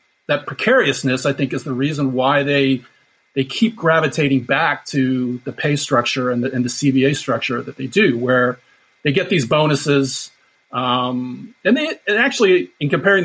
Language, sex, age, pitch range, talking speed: English, male, 30-49, 130-145 Hz, 170 wpm